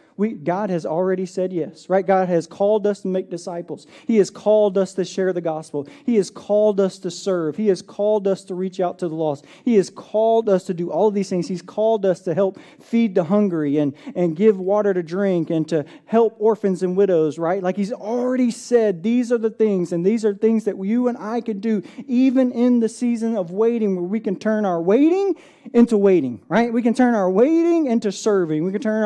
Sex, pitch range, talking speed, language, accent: male, 165-220 Hz, 230 wpm, English, American